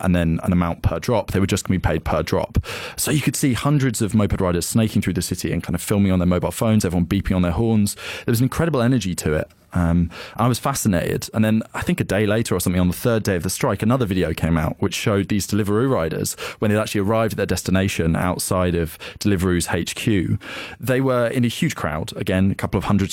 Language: English